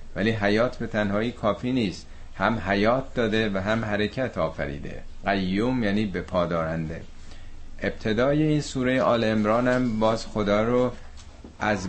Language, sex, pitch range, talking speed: Persian, male, 85-115 Hz, 125 wpm